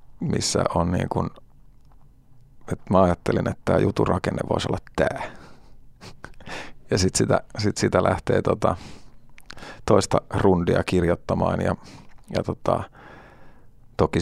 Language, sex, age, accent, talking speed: Finnish, male, 30-49, native, 110 wpm